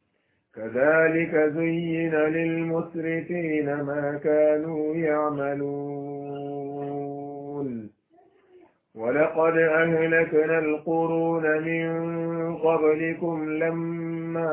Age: 50-69